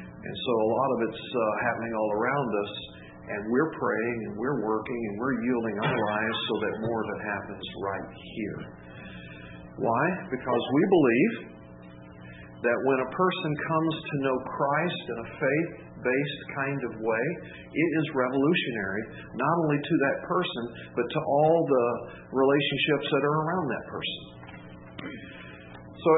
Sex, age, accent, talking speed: male, 50-69, American, 155 wpm